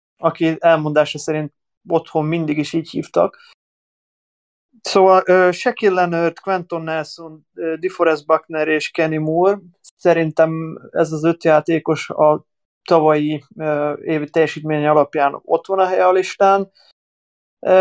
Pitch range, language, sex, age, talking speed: 155-175 Hz, Hungarian, male, 30-49, 125 wpm